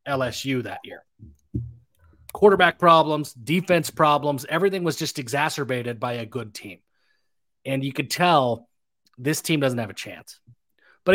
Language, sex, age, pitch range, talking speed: English, male, 30-49, 135-175 Hz, 140 wpm